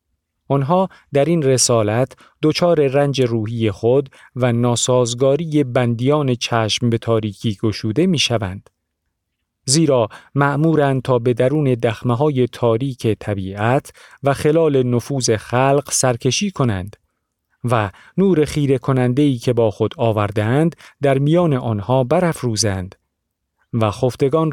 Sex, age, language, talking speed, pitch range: male, 40-59, Persian, 110 wpm, 110-145 Hz